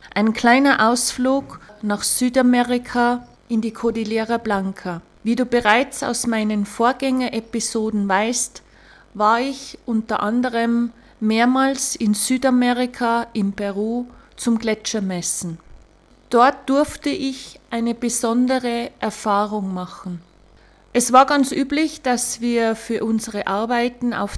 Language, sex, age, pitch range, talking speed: German, female, 30-49, 210-250 Hz, 110 wpm